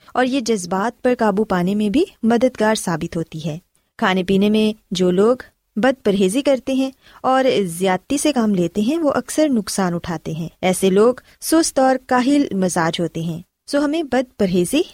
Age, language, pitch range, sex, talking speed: 20-39, Urdu, 185-265 Hz, female, 175 wpm